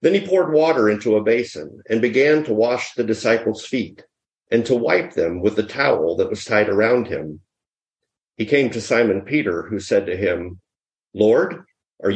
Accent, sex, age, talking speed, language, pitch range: American, male, 50-69, 185 wpm, English, 100-145 Hz